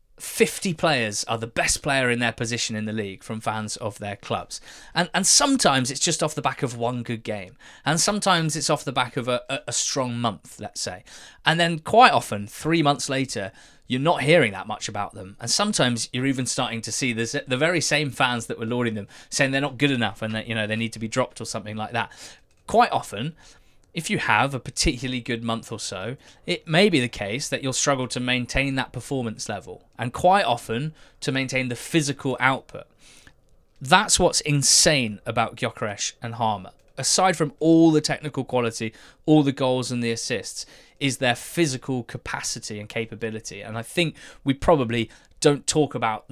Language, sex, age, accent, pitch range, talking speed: English, male, 20-39, British, 115-145 Hz, 200 wpm